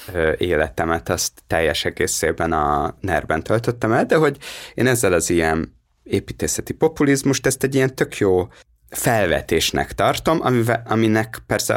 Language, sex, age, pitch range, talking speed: Hungarian, male, 30-49, 95-120 Hz, 135 wpm